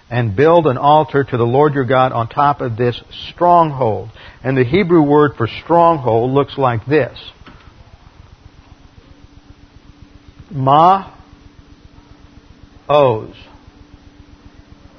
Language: English